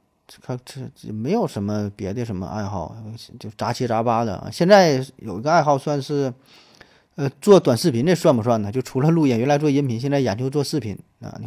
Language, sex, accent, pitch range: Chinese, male, native, 105-130 Hz